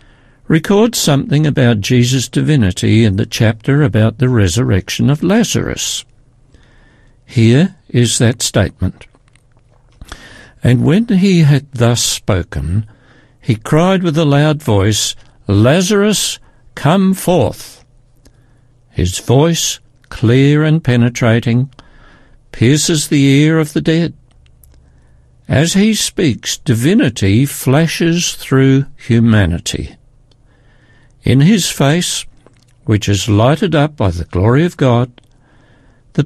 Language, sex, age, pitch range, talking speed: English, male, 60-79, 120-150 Hz, 105 wpm